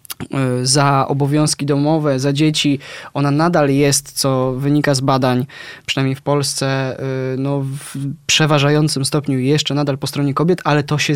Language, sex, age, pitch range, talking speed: Polish, male, 20-39, 140-170 Hz, 145 wpm